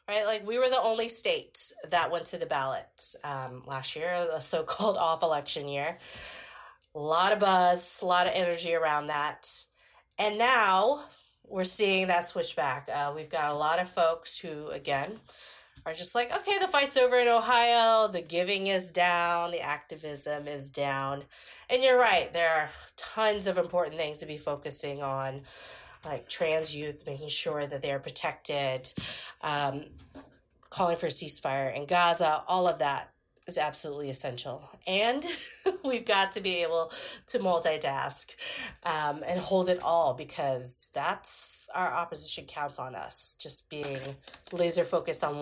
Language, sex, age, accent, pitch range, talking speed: English, female, 30-49, American, 150-190 Hz, 160 wpm